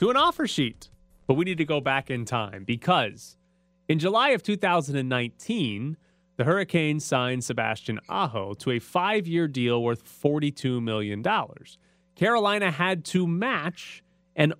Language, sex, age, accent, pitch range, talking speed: English, male, 30-49, American, 120-175 Hz, 140 wpm